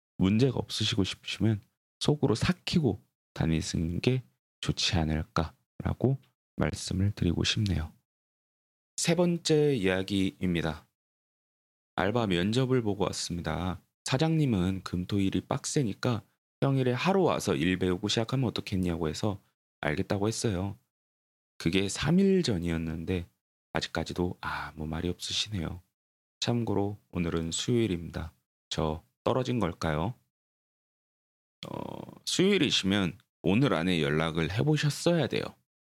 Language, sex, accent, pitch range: Korean, male, native, 85-125 Hz